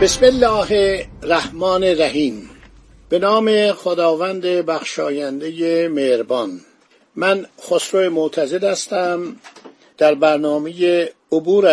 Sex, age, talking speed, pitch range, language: male, 50-69, 80 wpm, 155-195 Hz, Persian